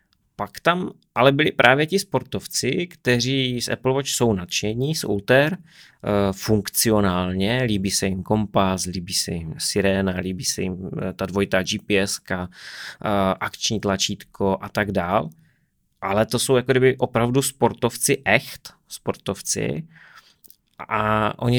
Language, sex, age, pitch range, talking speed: Czech, male, 30-49, 100-120 Hz, 130 wpm